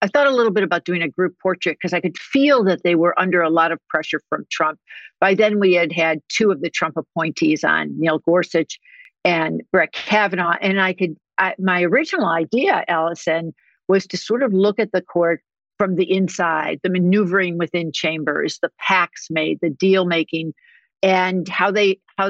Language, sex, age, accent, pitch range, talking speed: English, female, 60-79, American, 170-205 Hz, 195 wpm